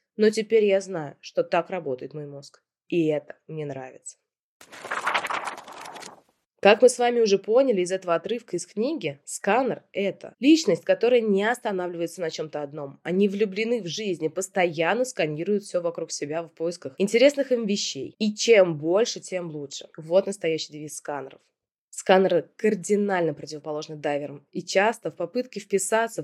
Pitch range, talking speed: 165-235 Hz, 150 wpm